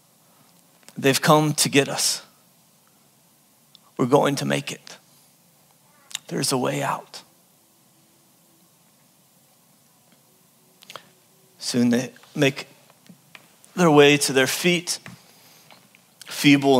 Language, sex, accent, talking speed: English, male, American, 80 wpm